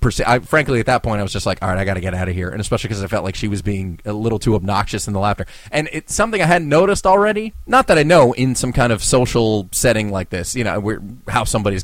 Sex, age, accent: male, 30-49, American